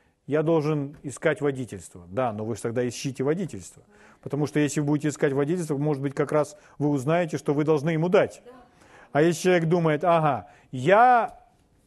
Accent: native